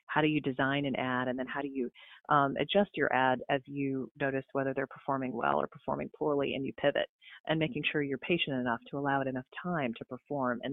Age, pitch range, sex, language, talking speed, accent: 30-49, 140-170 Hz, female, English, 235 wpm, American